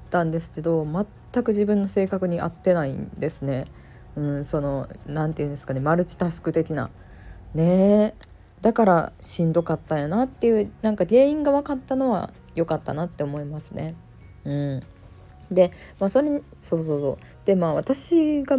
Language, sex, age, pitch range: Japanese, female, 20-39, 145-210 Hz